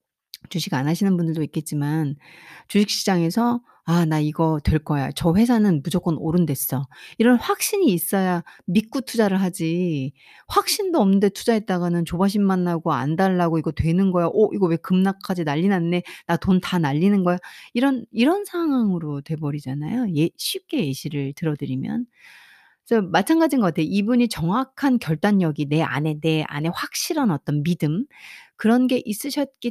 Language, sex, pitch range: Korean, female, 160-235 Hz